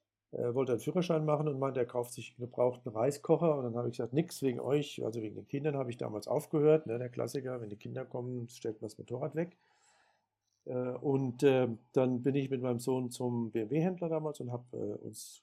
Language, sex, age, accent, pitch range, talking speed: German, male, 50-69, German, 120-140 Hz, 200 wpm